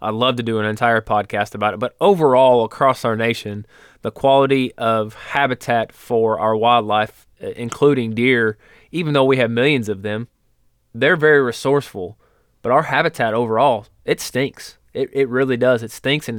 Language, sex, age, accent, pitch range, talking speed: English, male, 20-39, American, 115-135 Hz, 170 wpm